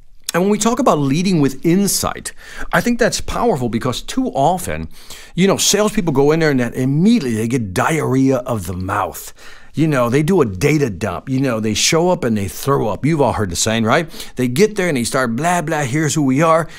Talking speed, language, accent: 230 wpm, English, American